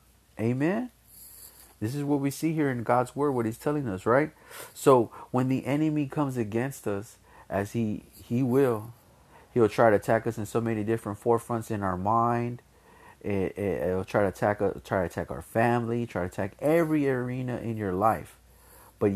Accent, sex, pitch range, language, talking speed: American, male, 105-130 Hz, English, 190 wpm